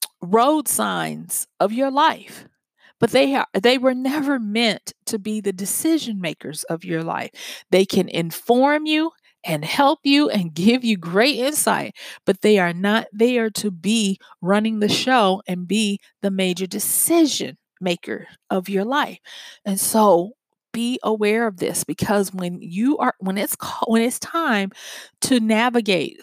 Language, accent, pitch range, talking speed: English, American, 185-245 Hz, 155 wpm